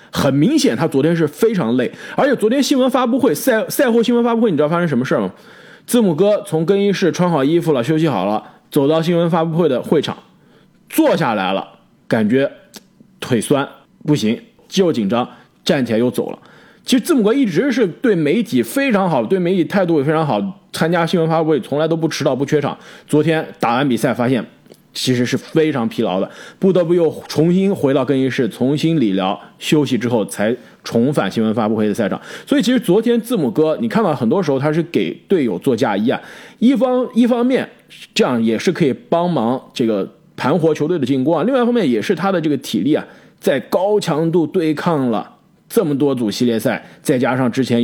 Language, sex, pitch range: Chinese, male, 140-220 Hz